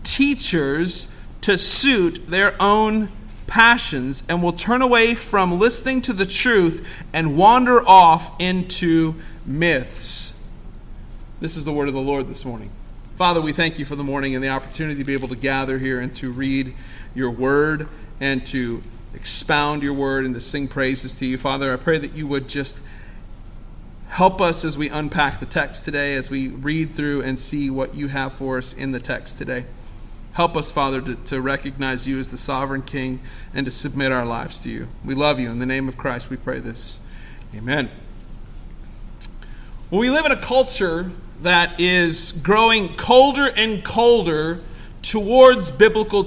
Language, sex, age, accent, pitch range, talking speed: English, male, 40-59, American, 135-205 Hz, 175 wpm